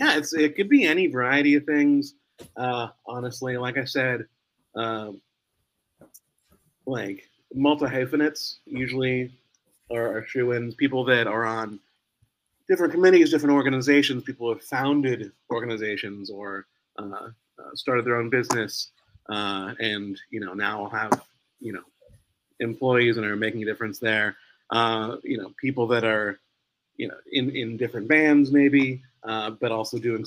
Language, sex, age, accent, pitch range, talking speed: English, male, 30-49, American, 110-135 Hz, 145 wpm